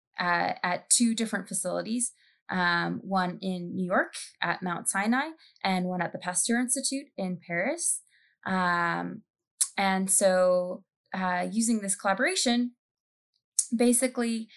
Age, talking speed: 20-39, 120 wpm